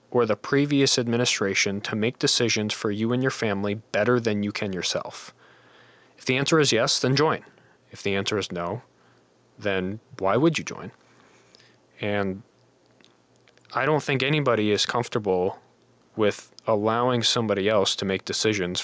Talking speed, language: 155 wpm, English